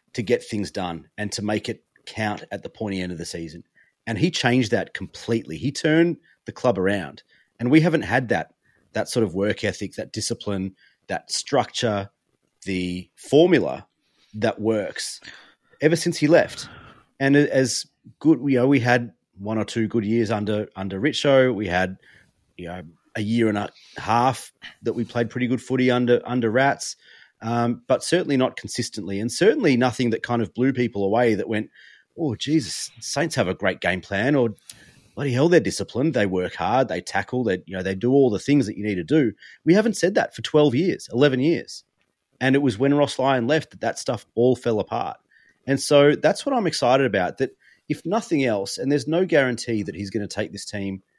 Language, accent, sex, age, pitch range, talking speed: English, Australian, male, 30-49, 100-135 Hz, 195 wpm